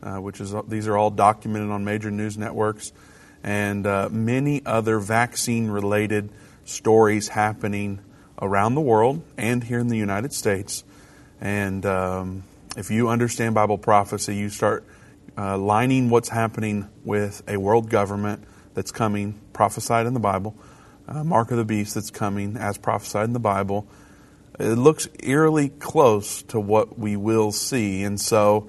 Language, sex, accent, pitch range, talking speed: English, male, American, 100-115 Hz, 155 wpm